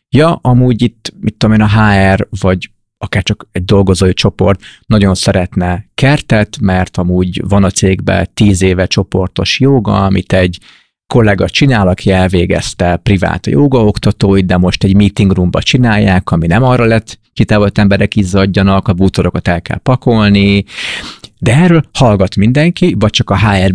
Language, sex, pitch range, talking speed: Hungarian, male, 95-115 Hz, 155 wpm